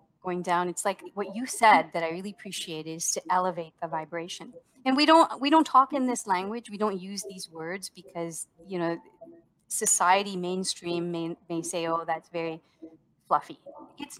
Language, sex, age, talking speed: English, female, 30-49, 180 wpm